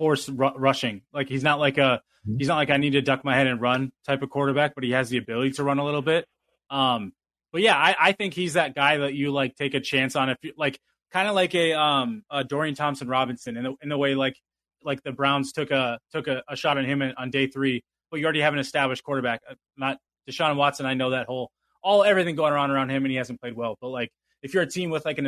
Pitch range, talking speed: 130-145 Hz, 270 wpm